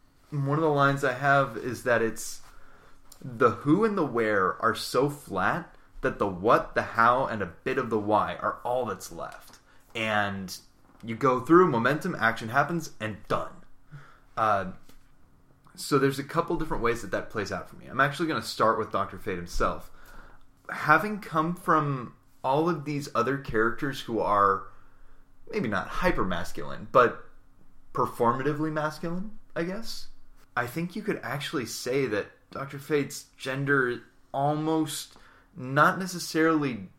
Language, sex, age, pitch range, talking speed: English, male, 20-39, 110-155 Hz, 150 wpm